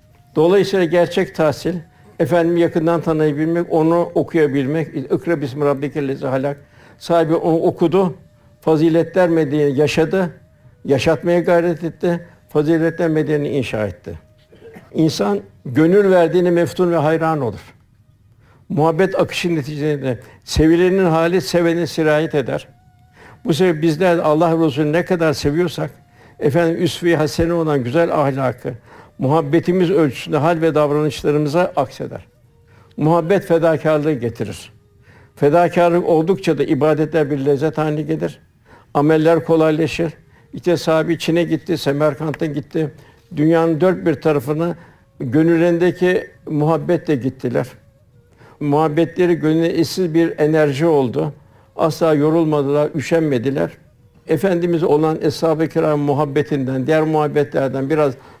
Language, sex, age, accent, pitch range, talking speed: Turkish, male, 60-79, native, 145-170 Hz, 105 wpm